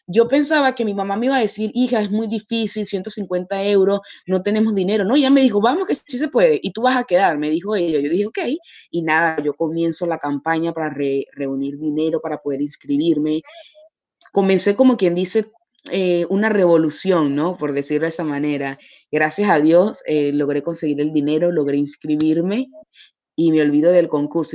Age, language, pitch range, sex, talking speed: 20-39, Spanish, 150-215 Hz, female, 195 wpm